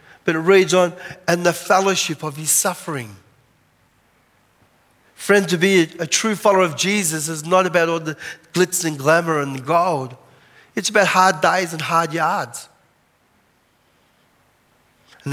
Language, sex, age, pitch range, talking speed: English, male, 40-59, 125-170 Hz, 150 wpm